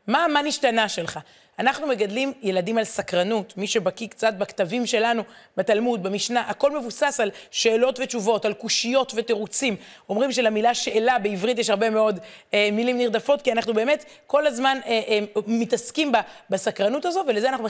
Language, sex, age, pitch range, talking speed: Hebrew, female, 30-49, 200-255 Hz, 160 wpm